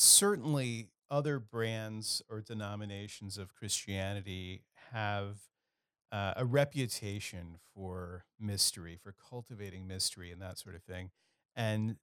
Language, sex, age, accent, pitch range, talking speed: English, male, 40-59, American, 100-120 Hz, 110 wpm